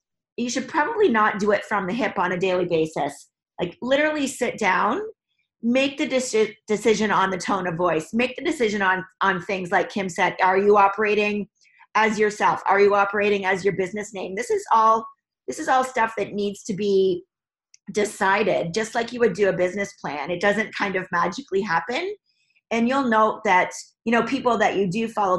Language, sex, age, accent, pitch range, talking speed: English, female, 40-59, American, 190-230 Hz, 195 wpm